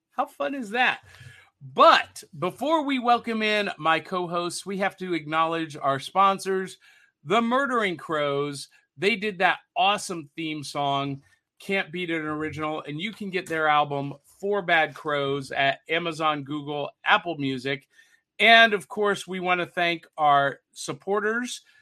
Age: 40-59